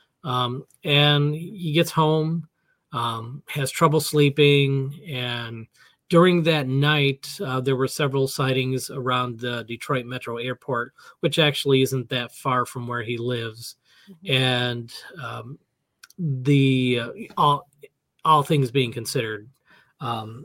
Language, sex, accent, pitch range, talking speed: English, male, American, 125-155 Hz, 125 wpm